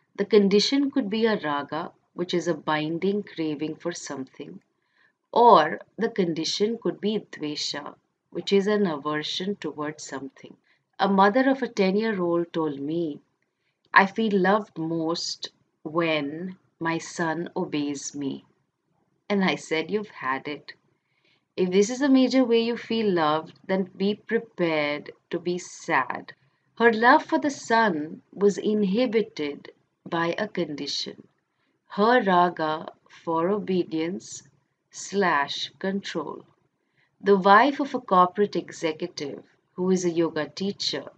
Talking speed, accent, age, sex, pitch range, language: 130 wpm, Indian, 30-49, female, 155-205 Hz, English